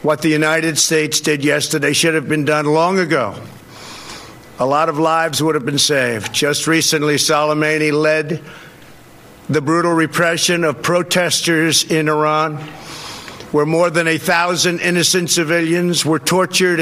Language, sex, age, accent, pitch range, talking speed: English, male, 60-79, American, 150-175 Hz, 145 wpm